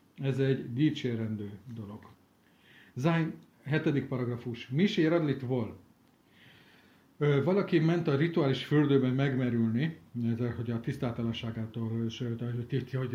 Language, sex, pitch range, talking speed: Hungarian, male, 120-155 Hz, 85 wpm